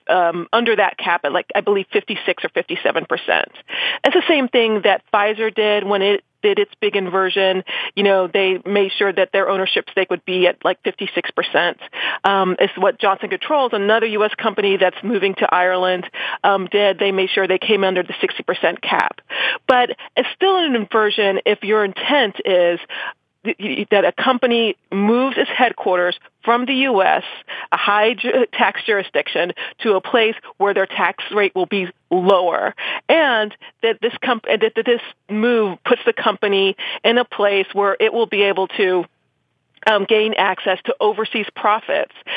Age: 30-49